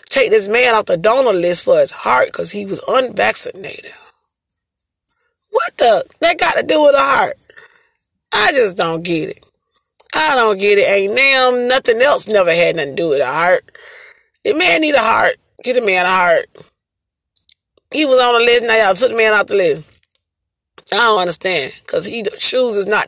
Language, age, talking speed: English, 30-49, 190 wpm